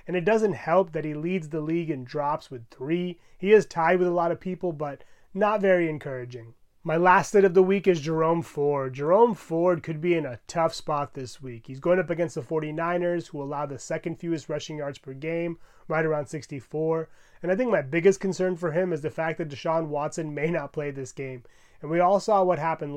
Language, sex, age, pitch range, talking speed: English, male, 30-49, 150-180 Hz, 225 wpm